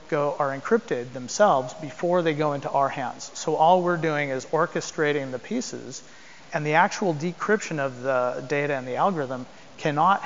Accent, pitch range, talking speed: American, 130-160 Hz, 170 wpm